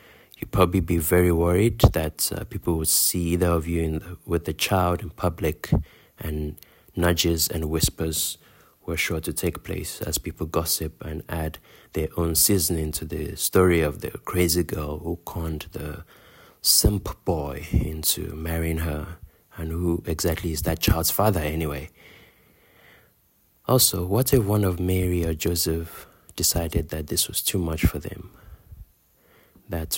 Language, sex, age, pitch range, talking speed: English, male, 30-49, 80-90 Hz, 150 wpm